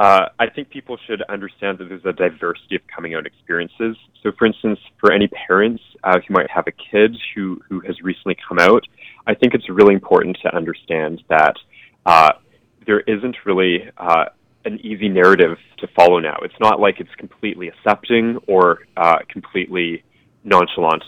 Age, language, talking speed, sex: 20-39, English, 175 wpm, male